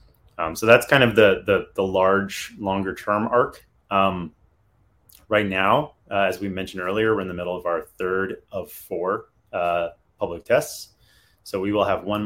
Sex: male